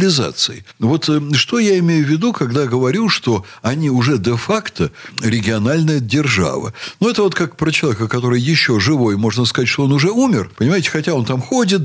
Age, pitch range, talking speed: 60-79, 120-175 Hz, 170 wpm